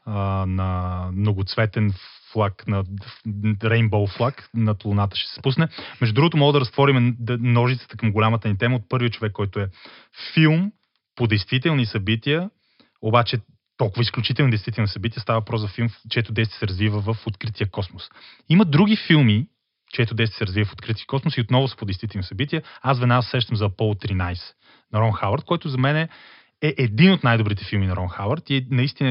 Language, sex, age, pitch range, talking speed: Bulgarian, male, 30-49, 100-125 Hz, 175 wpm